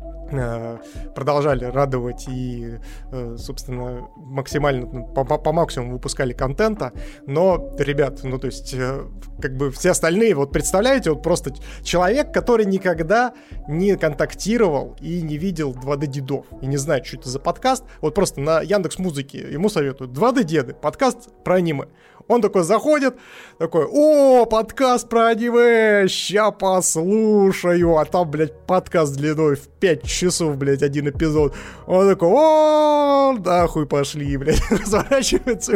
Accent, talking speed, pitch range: native, 135 wpm, 135-190 Hz